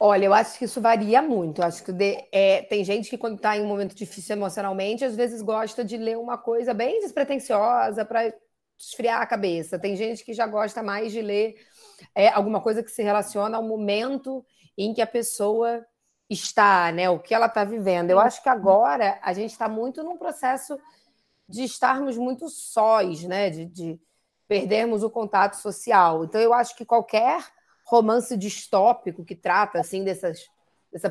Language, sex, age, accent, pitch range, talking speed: Portuguese, female, 20-39, Brazilian, 190-225 Hz, 185 wpm